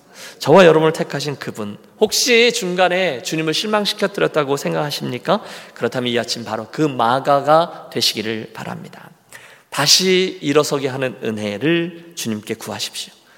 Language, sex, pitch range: Korean, male, 115-160 Hz